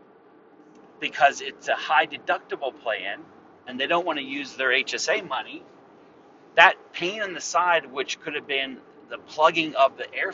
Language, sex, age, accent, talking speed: English, male, 40-59, American, 170 wpm